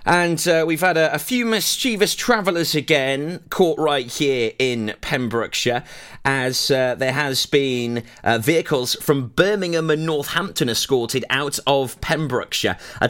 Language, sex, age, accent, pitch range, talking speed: English, male, 30-49, British, 110-150 Hz, 140 wpm